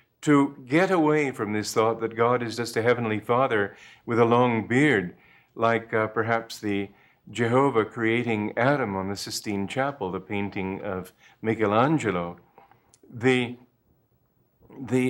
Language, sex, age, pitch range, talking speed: English, male, 50-69, 110-145 Hz, 135 wpm